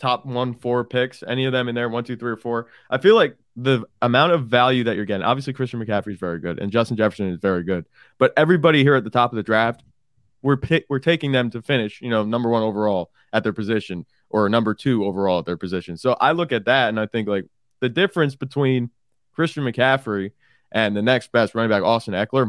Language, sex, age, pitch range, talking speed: English, male, 20-39, 105-125 Hz, 235 wpm